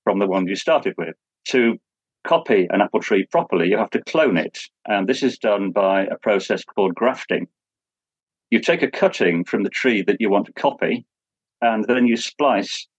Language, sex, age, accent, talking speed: English, male, 40-59, British, 195 wpm